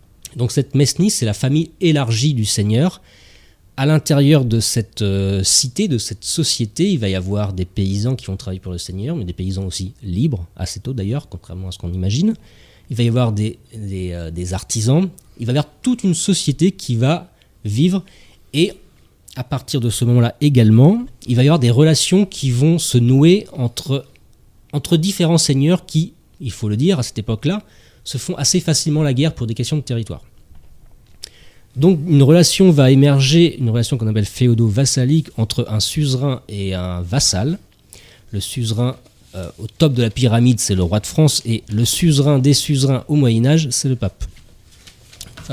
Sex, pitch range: male, 105-150 Hz